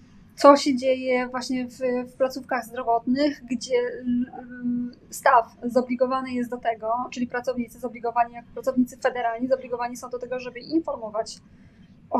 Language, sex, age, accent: Polish, female, 20-39, native